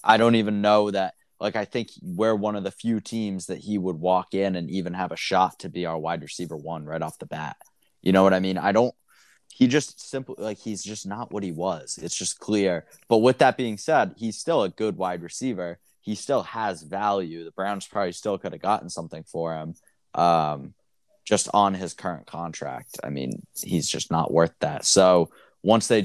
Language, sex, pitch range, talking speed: English, male, 85-105 Hz, 220 wpm